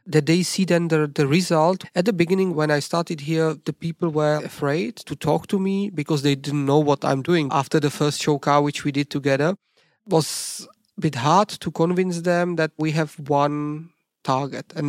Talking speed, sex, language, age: 205 wpm, male, English, 40-59